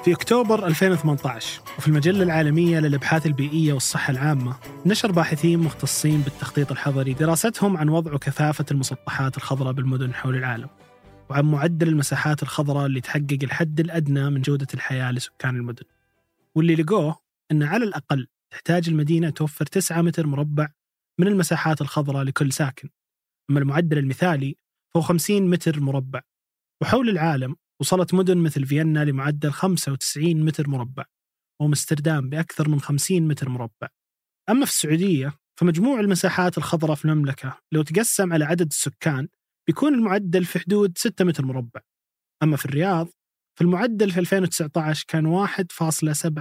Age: 20-39